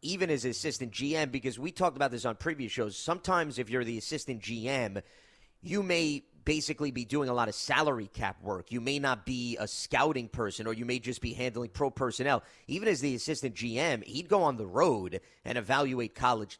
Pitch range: 120-140 Hz